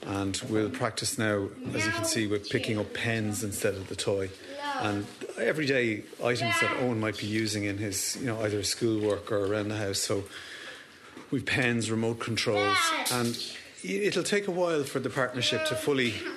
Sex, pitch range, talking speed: male, 100-125 Hz, 185 wpm